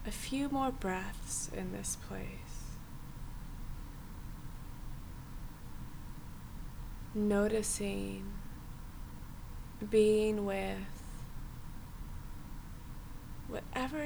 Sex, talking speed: female, 45 wpm